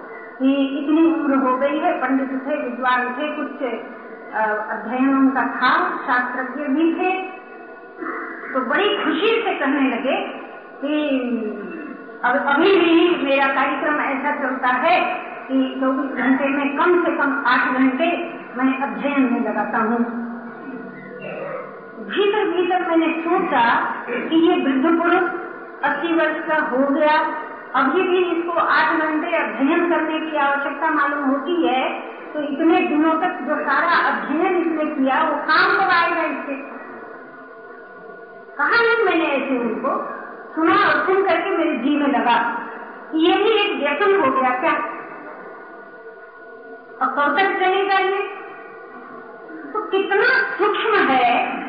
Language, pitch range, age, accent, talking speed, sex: Hindi, 265-360 Hz, 50-69, native, 125 wpm, female